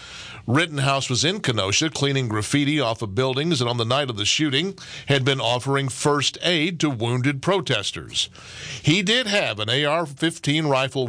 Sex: male